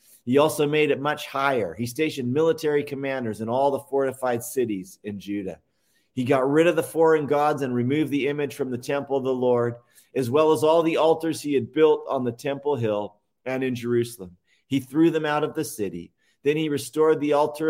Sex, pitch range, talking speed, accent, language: male, 115-140 Hz, 210 wpm, American, English